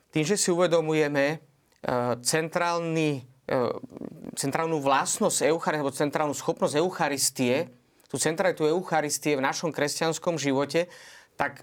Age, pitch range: 30-49, 150-185 Hz